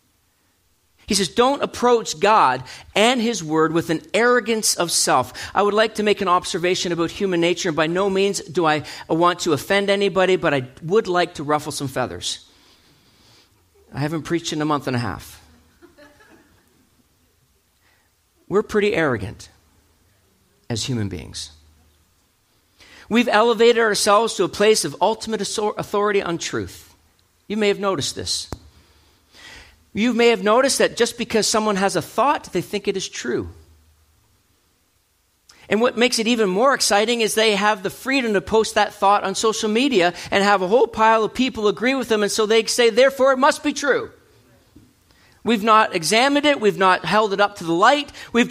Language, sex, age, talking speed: English, male, 40-59, 170 wpm